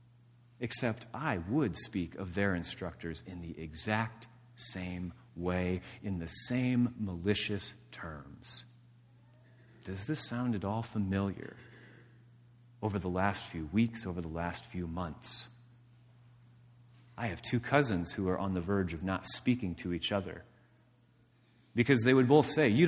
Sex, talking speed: male, 140 wpm